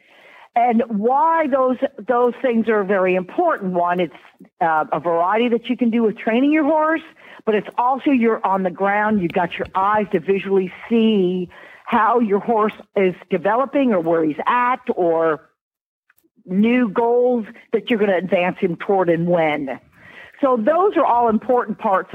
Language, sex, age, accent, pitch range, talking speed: English, female, 50-69, American, 190-250 Hz, 170 wpm